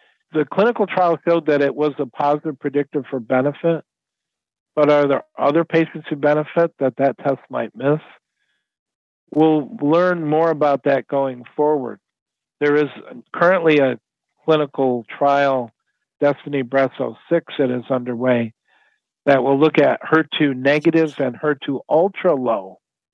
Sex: male